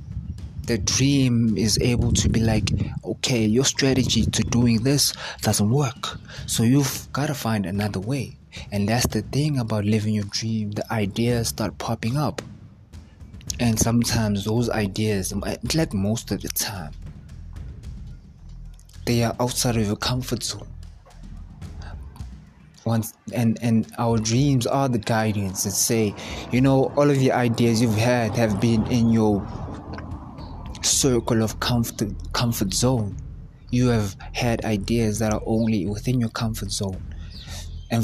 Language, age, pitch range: English, 20-39, 100-120 Hz